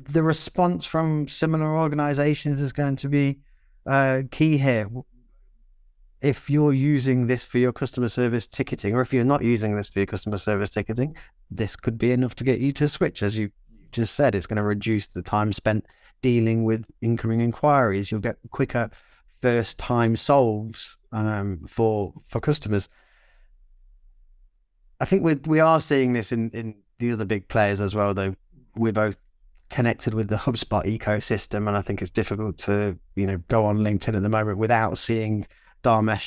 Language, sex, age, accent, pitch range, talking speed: English, male, 20-39, British, 105-125 Hz, 175 wpm